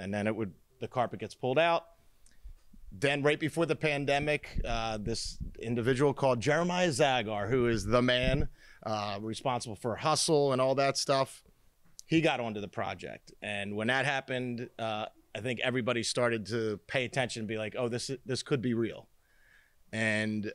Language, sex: English, male